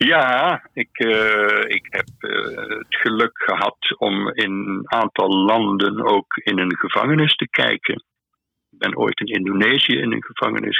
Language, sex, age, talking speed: Dutch, male, 60-79, 150 wpm